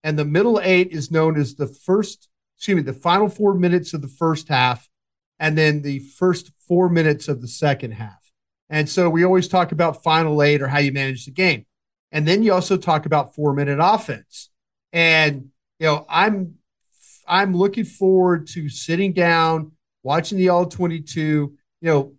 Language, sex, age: English, male, 40-59